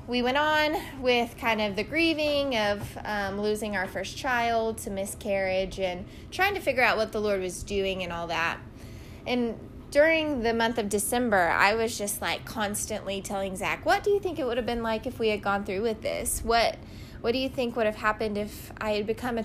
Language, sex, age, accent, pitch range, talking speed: English, female, 10-29, American, 200-235 Hz, 220 wpm